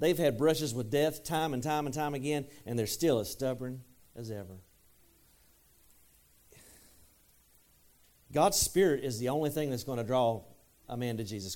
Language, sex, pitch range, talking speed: English, male, 100-145 Hz, 165 wpm